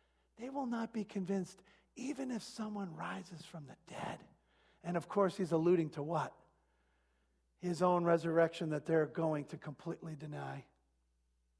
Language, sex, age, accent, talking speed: English, male, 50-69, American, 145 wpm